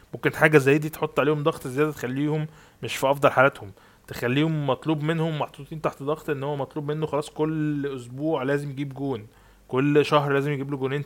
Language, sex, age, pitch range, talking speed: Arabic, male, 20-39, 130-160 Hz, 190 wpm